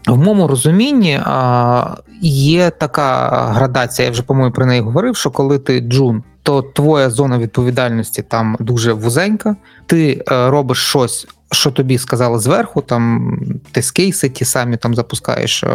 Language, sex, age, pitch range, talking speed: Ukrainian, male, 20-39, 120-145 Hz, 145 wpm